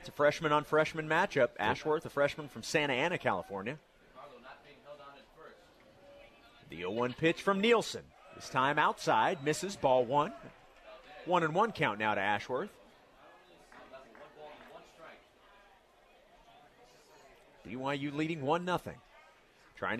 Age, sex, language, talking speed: 40-59, male, English, 105 wpm